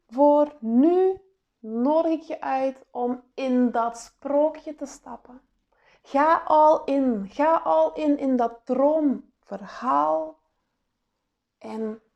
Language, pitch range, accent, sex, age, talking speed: Dutch, 230-310 Hz, Dutch, female, 20-39, 110 wpm